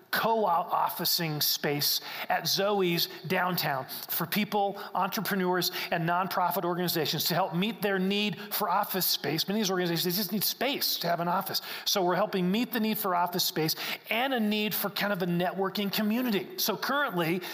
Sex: male